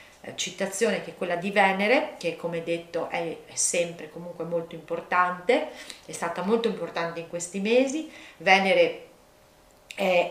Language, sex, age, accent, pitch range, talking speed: Italian, female, 40-59, native, 170-205 Hz, 135 wpm